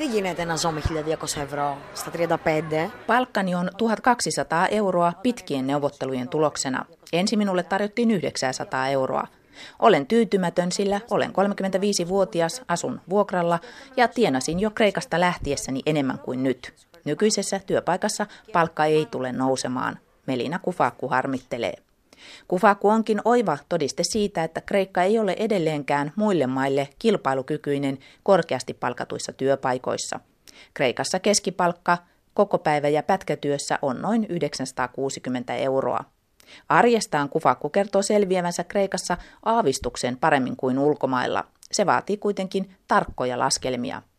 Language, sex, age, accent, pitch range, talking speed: Finnish, female, 30-49, native, 145-205 Hz, 105 wpm